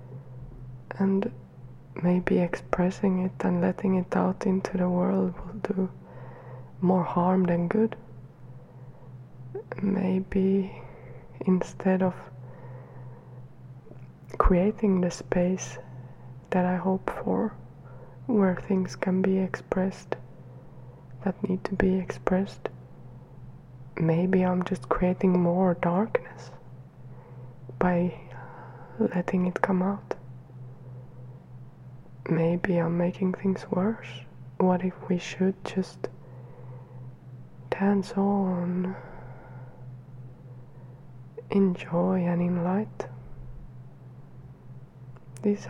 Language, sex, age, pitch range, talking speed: English, female, 20-39, 130-190 Hz, 85 wpm